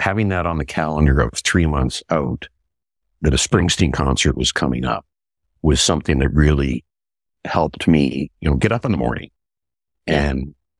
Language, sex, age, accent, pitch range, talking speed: English, male, 60-79, American, 70-85 Hz, 165 wpm